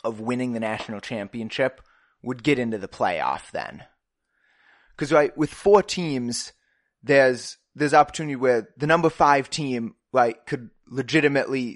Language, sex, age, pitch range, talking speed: English, male, 20-39, 115-140 Hz, 140 wpm